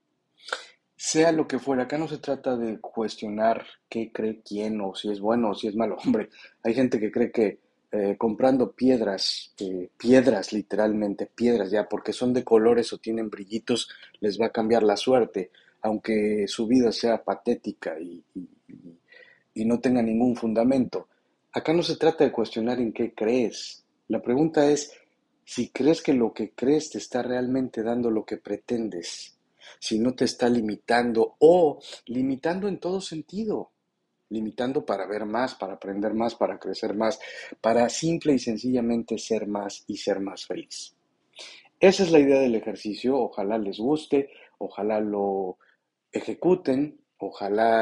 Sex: male